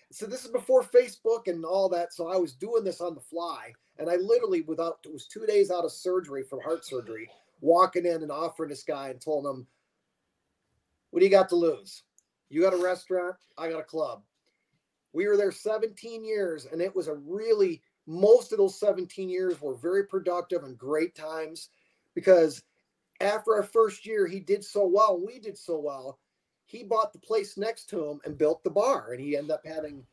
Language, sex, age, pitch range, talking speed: English, male, 40-59, 165-225 Hz, 205 wpm